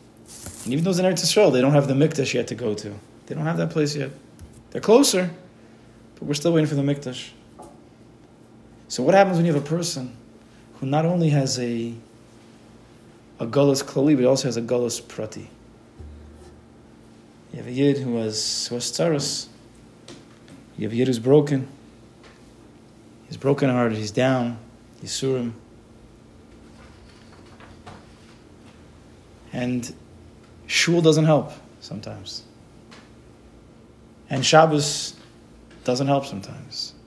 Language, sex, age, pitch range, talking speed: English, male, 30-49, 115-145 Hz, 135 wpm